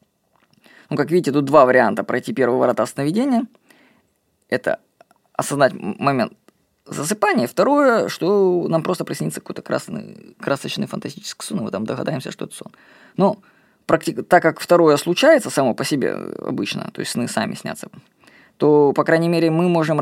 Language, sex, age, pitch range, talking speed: Russian, female, 20-39, 150-205 Hz, 150 wpm